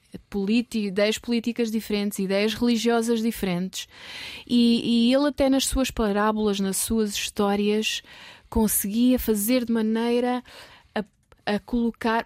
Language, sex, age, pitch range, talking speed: Portuguese, female, 20-39, 200-240 Hz, 115 wpm